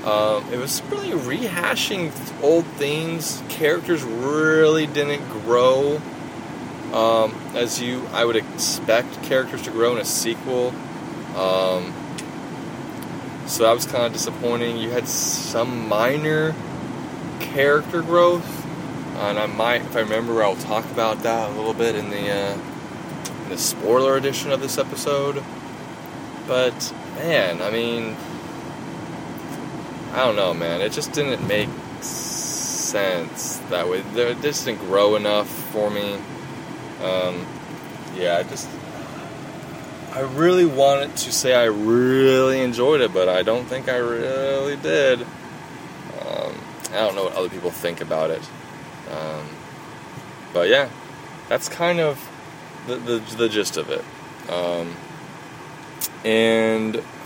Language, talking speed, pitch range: English, 130 wpm, 110-145 Hz